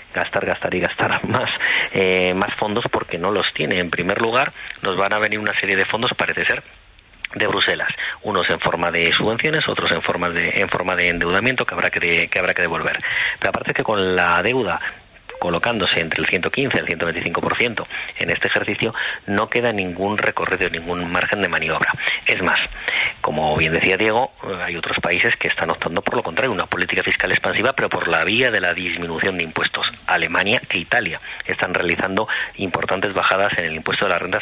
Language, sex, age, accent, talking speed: Spanish, male, 40-59, Spanish, 195 wpm